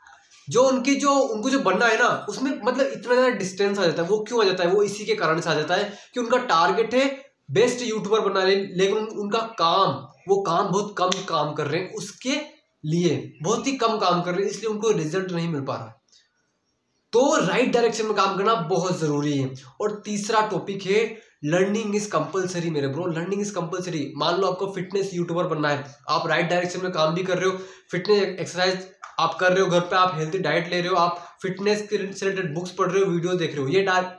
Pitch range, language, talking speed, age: 160-200 Hz, Hindi, 225 wpm, 20-39